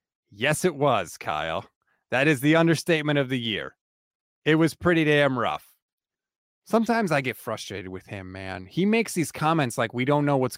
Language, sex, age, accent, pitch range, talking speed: English, male, 30-49, American, 140-190 Hz, 180 wpm